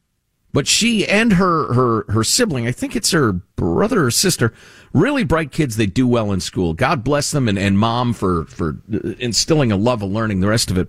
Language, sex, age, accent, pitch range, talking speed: English, male, 50-69, American, 105-170 Hz, 215 wpm